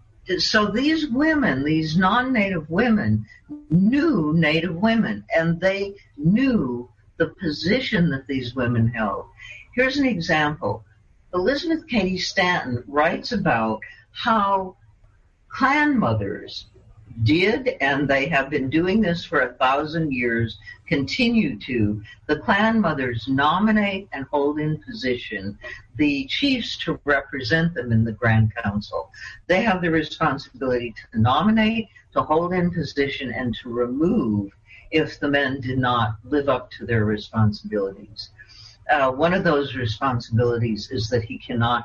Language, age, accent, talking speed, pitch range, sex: English, 60-79, American, 130 wpm, 115-180 Hz, female